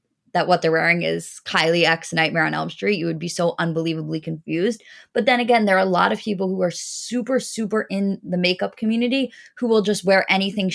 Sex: female